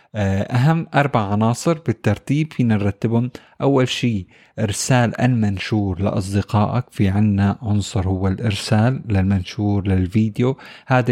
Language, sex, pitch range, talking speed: Arabic, male, 105-120 Hz, 105 wpm